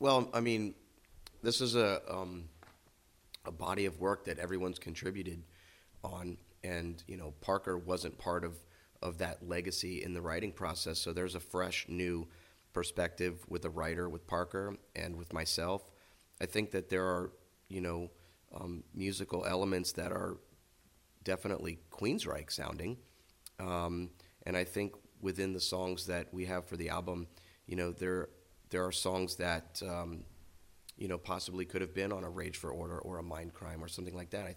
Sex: male